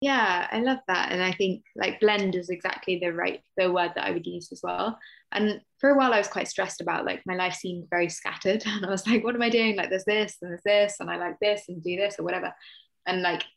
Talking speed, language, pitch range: 270 wpm, English, 175-210 Hz